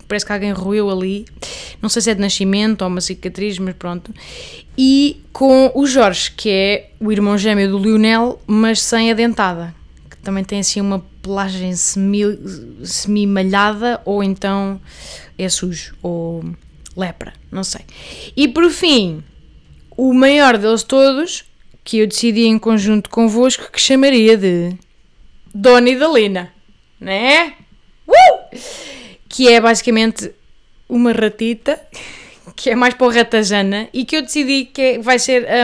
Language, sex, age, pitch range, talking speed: Portuguese, female, 20-39, 200-260 Hz, 150 wpm